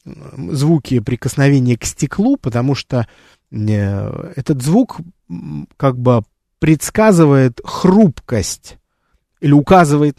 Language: Russian